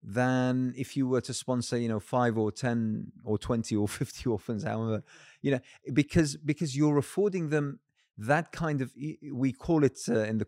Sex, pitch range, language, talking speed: male, 110-150 Hz, English, 190 wpm